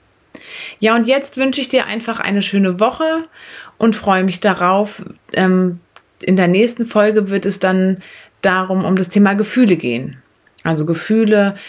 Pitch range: 170-215 Hz